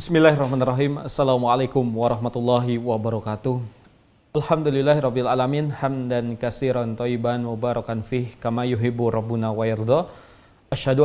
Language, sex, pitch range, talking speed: Indonesian, male, 115-140 Hz, 90 wpm